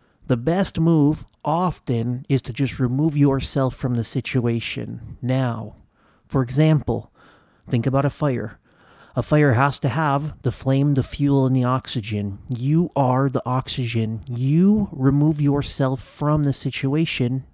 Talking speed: 140 wpm